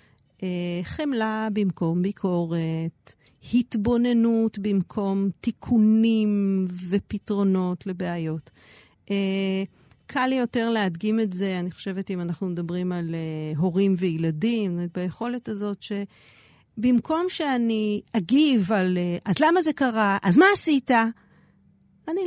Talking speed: 95 wpm